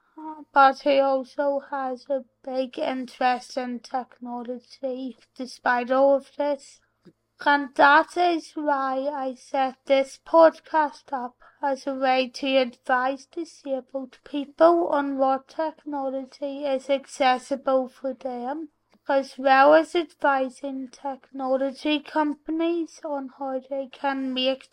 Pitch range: 260-285 Hz